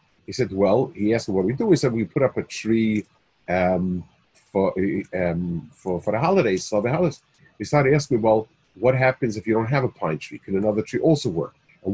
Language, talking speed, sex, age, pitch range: English, 230 wpm, male, 40-59, 95-130 Hz